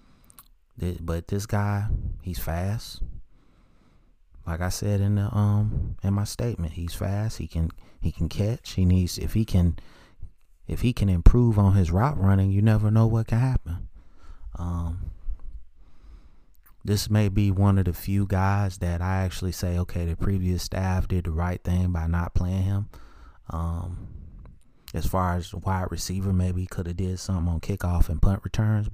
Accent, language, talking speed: American, English, 170 wpm